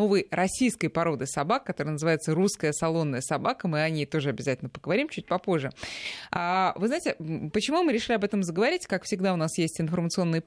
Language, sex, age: Russian, female, 20-39